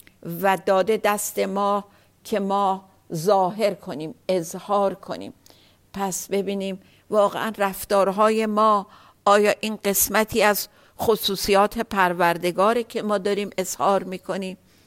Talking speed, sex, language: 105 wpm, female, Persian